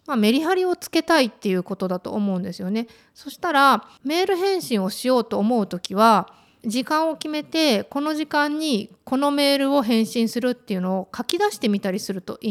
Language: Japanese